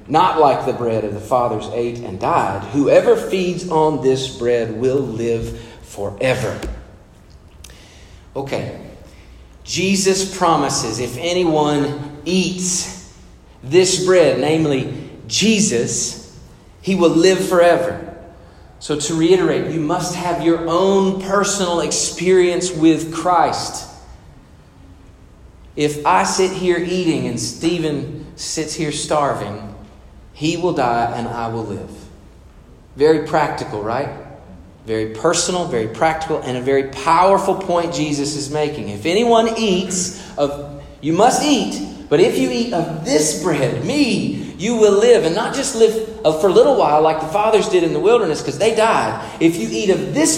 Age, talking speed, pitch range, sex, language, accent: 40-59, 140 wpm, 120-180 Hz, male, English, American